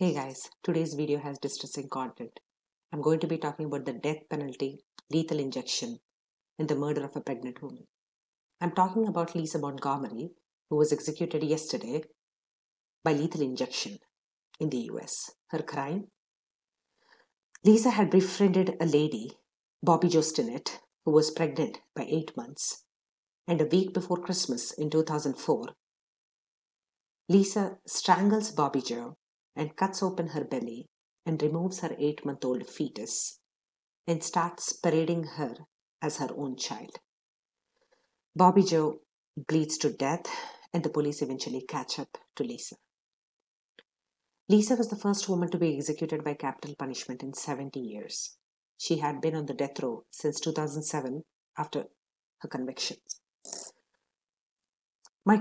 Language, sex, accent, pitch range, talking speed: English, female, Indian, 145-185 Hz, 135 wpm